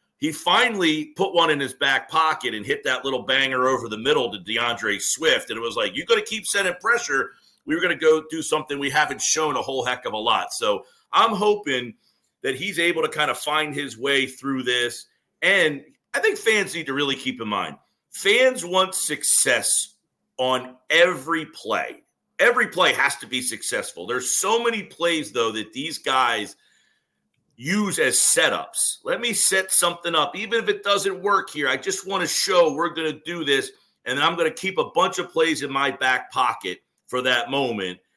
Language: English